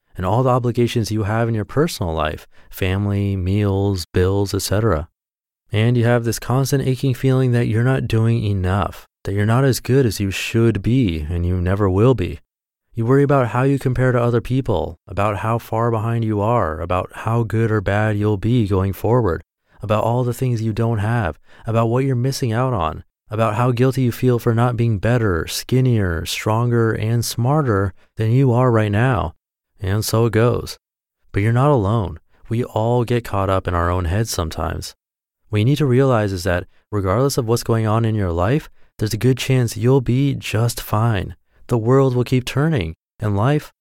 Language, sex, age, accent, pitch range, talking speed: English, male, 30-49, American, 100-125 Hz, 195 wpm